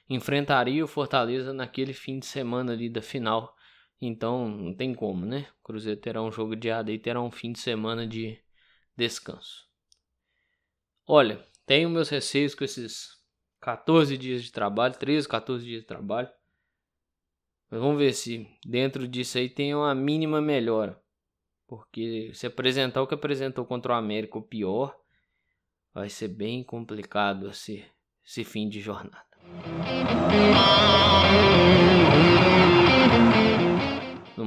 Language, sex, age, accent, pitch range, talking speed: Portuguese, male, 20-39, Brazilian, 110-125 Hz, 135 wpm